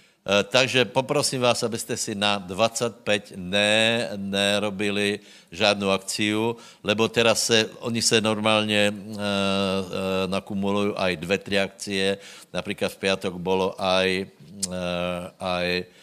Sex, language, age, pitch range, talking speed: male, Slovak, 60-79, 95-110 Hz, 105 wpm